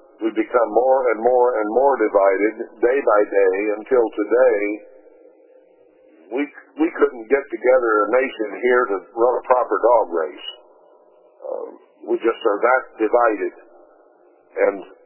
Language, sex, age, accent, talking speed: English, male, 60-79, American, 135 wpm